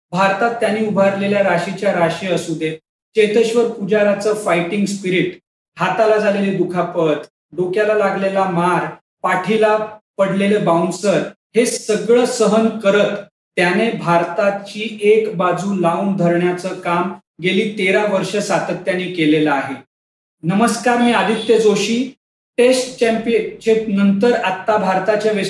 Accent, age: native, 40-59